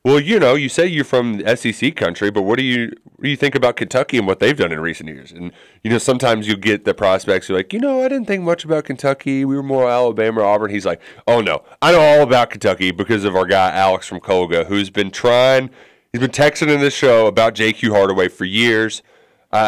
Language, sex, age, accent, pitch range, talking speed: English, male, 30-49, American, 95-125 Hz, 245 wpm